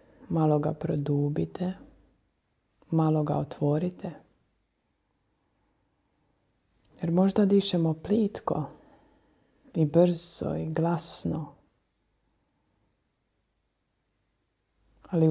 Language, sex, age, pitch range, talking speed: Croatian, female, 30-49, 145-170 Hz, 60 wpm